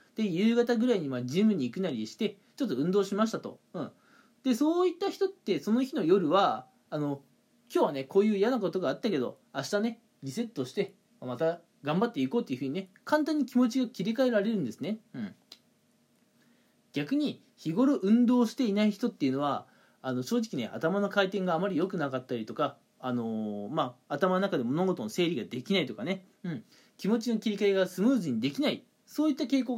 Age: 20-39